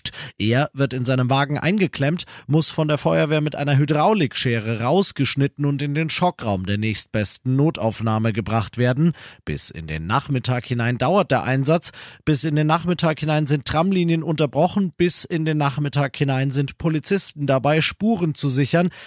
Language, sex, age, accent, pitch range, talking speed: German, male, 40-59, German, 120-160 Hz, 155 wpm